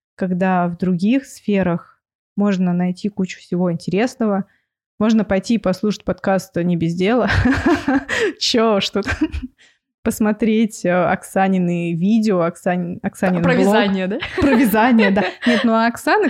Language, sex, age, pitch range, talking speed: Russian, female, 20-39, 190-245 Hz, 115 wpm